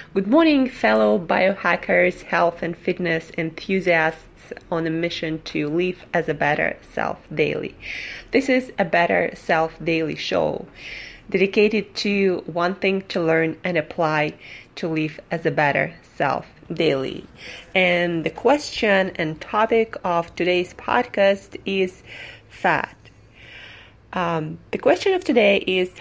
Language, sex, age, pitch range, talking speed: English, female, 30-49, 160-205 Hz, 130 wpm